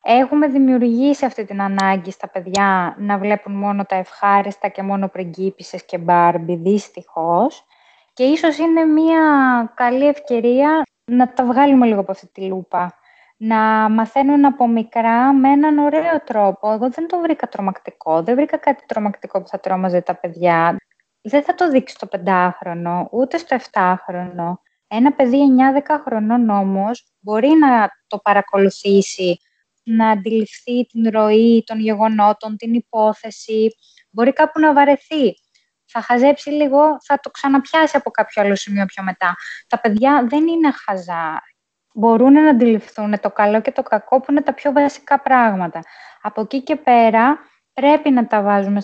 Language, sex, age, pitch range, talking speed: Greek, female, 20-39, 200-270 Hz, 150 wpm